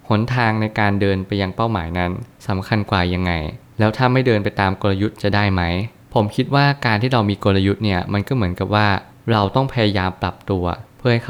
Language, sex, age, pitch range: Thai, male, 20-39, 95-115 Hz